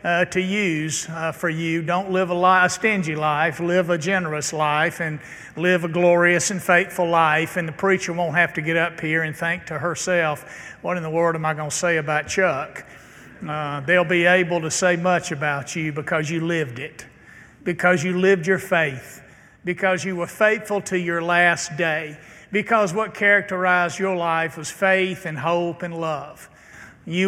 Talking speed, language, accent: 185 wpm, English, American